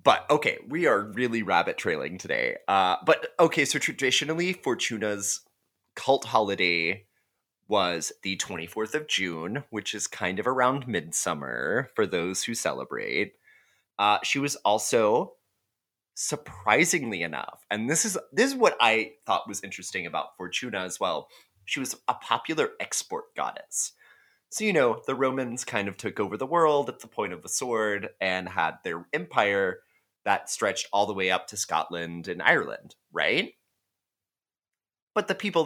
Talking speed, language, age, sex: 155 wpm, English, 30-49, male